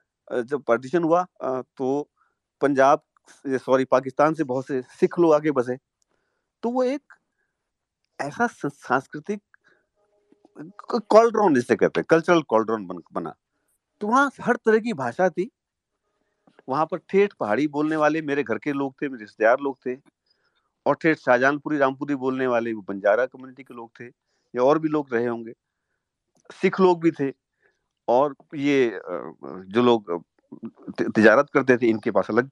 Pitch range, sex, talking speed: 120-195 Hz, male, 140 wpm